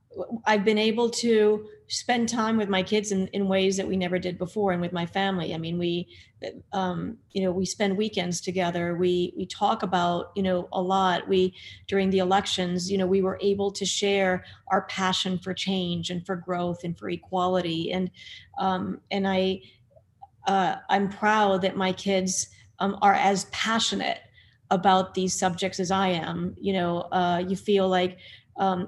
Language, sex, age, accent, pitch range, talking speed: English, female, 40-59, American, 180-195 Hz, 180 wpm